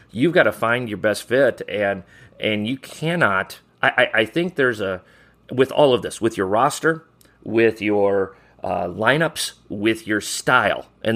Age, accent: 30-49, American